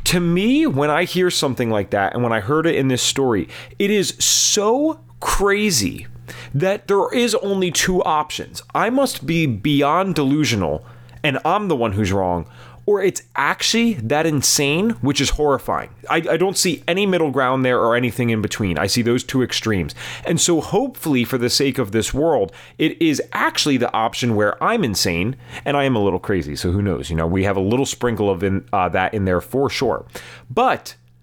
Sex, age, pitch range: male, 30-49, 115-180 Hz